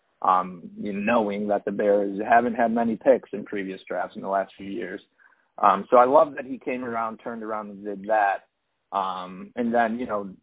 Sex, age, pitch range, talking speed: male, 20-39, 100-115 Hz, 215 wpm